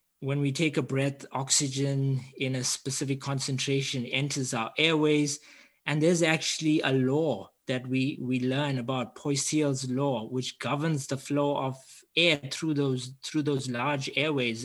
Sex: male